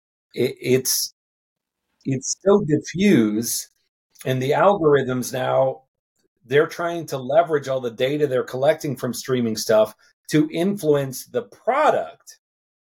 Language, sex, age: English, male, 40-59